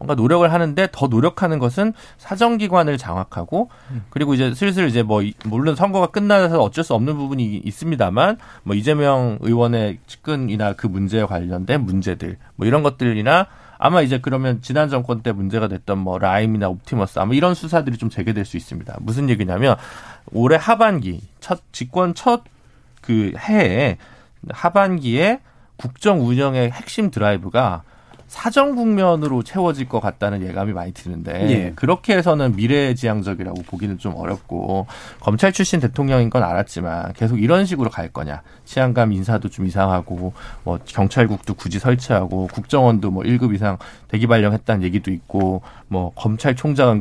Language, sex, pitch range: Korean, male, 100-145 Hz